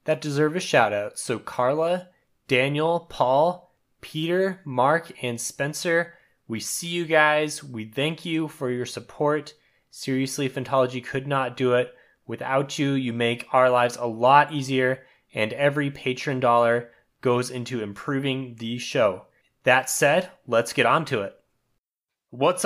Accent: American